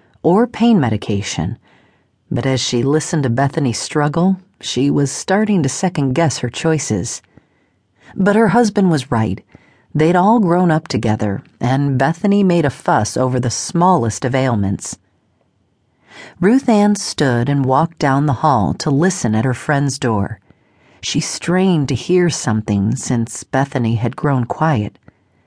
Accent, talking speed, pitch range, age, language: American, 145 wpm, 120-170 Hz, 40-59, English